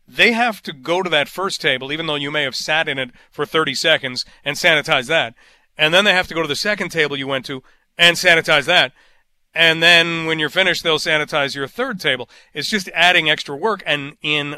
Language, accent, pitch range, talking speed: English, American, 145-170 Hz, 225 wpm